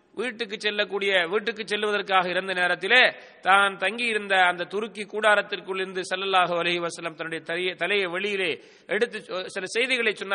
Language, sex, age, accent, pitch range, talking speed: English, male, 30-49, Indian, 175-215 Hz, 150 wpm